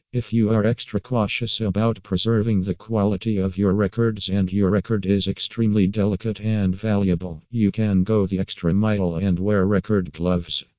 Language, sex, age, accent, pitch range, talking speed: English, male, 50-69, American, 95-110 Hz, 165 wpm